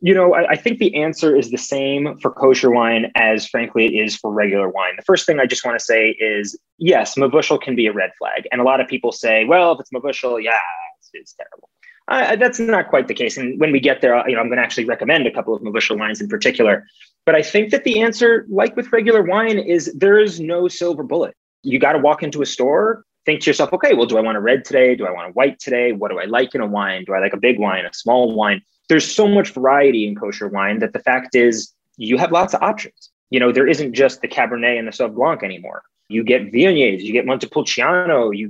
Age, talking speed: 20-39, 260 wpm